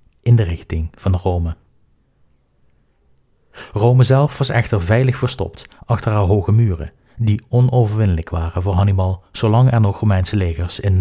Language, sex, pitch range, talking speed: Dutch, male, 95-115 Hz, 145 wpm